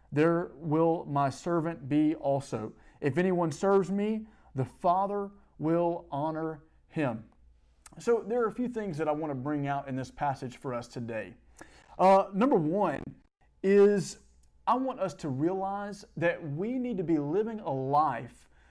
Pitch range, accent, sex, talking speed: 145-195 Hz, American, male, 160 wpm